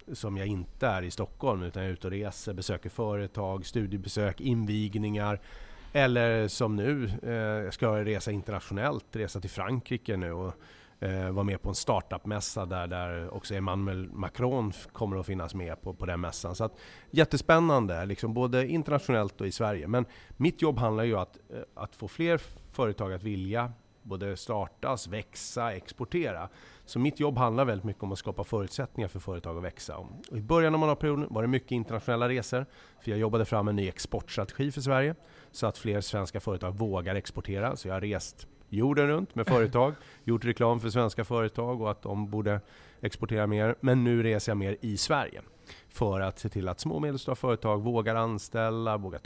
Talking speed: 185 wpm